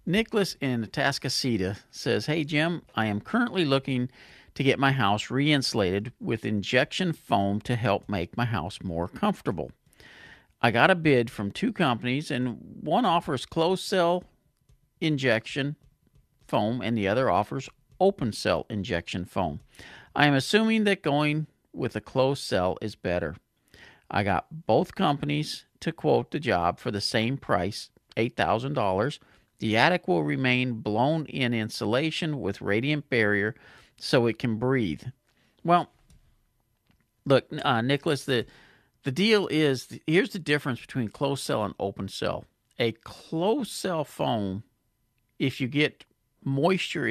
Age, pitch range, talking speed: 50-69, 110-145 Hz, 140 wpm